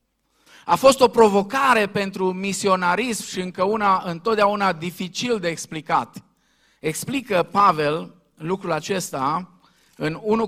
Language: Romanian